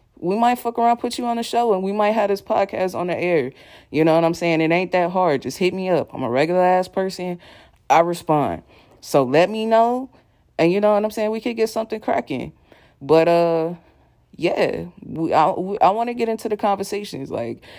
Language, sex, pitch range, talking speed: English, female, 155-195 Hz, 225 wpm